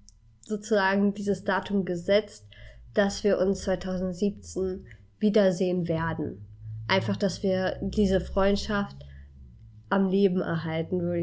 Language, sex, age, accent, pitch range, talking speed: German, female, 20-39, German, 175-210 Hz, 100 wpm